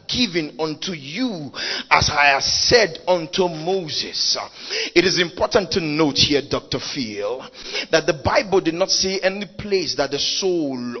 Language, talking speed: English, 155 wpm